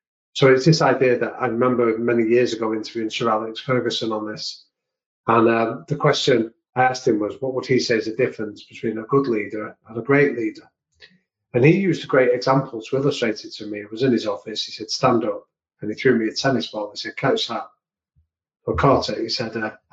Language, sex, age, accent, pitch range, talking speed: English, male, 30-49, British, 110-135 Hz, 225 wpm